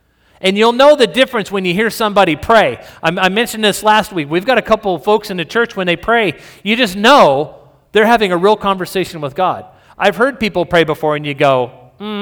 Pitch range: 145-210 Hz